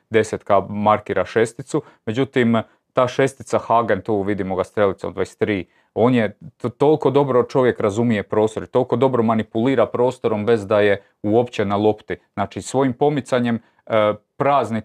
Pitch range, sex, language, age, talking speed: 100-125 Hz, male, Croatian, 30-49, 145 wpm